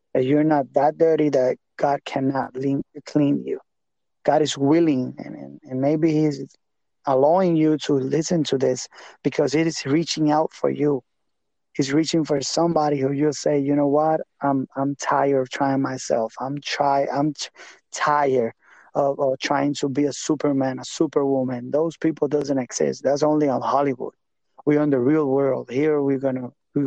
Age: 30-49